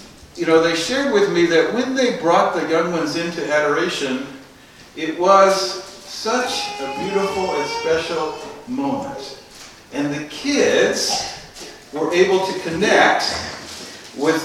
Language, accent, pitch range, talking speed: English, American, 155-245 Hz, 130 wpm